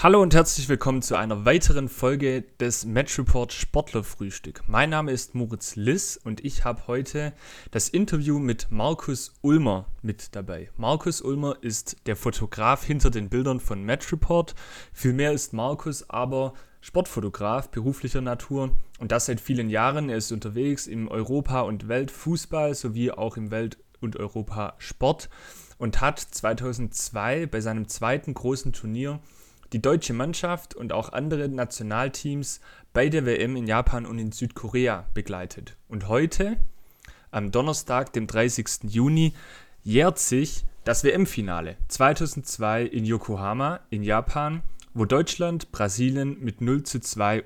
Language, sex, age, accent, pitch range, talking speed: German, male, 30-49, German, 110-145 Hz, 145 wpm